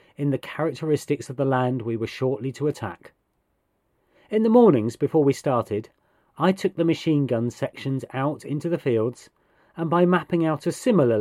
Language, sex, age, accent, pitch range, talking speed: English, male, 40-59, British, 120-160 Hz, 175 wpm